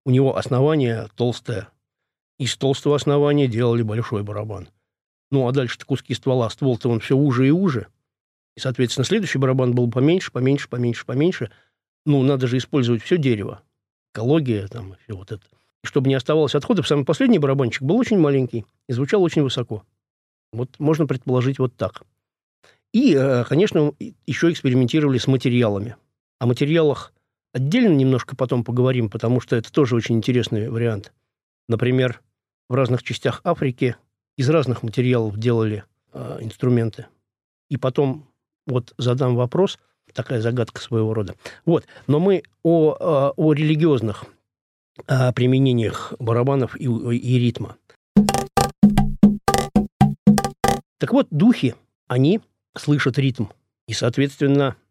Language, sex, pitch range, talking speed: Russian, male, 115-145 Hz, 130 wpm